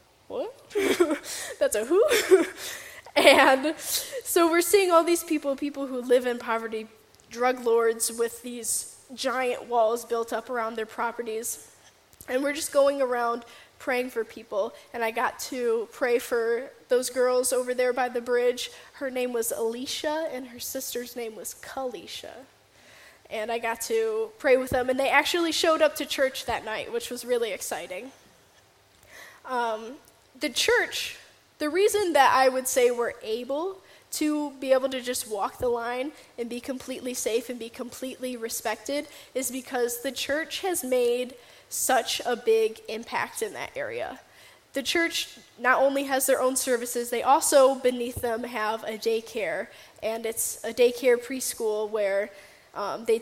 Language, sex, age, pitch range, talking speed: English, female, 10-29, 235-290 Hz, 160 wpm